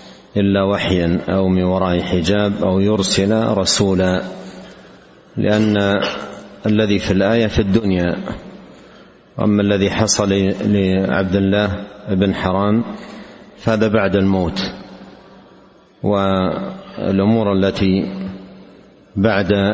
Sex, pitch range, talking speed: male, 95-105 Hz, 85 wpm